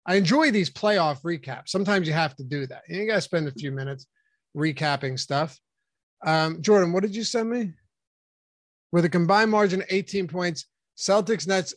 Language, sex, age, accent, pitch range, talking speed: English, male, 30-49, American, 165-205 Hz, 185 wpm